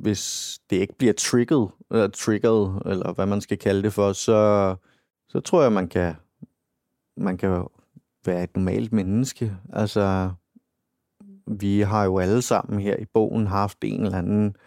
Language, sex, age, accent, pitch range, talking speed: Danish, male, 30-49, native, 95-110 Hz, 160 wpm